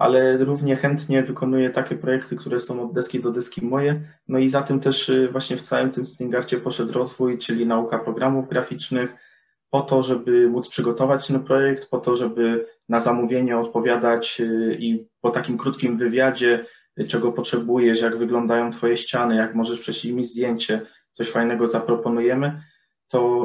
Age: 20-39